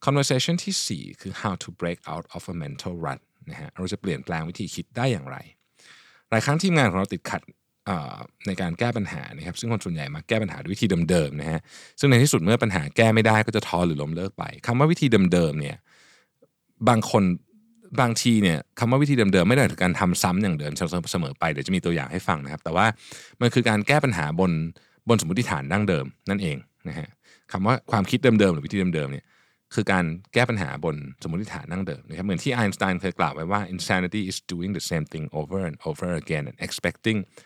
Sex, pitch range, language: male, 85-120 Hz, Thai